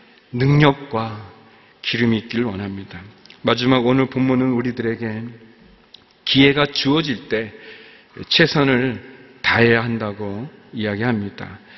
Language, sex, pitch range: Korean, male, 115-140 Hz